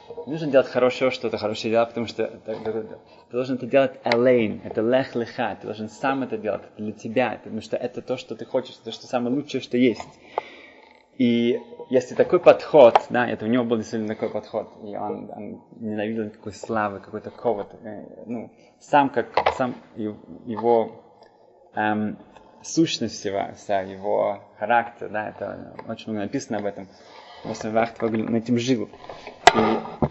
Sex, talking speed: male, 160 wpm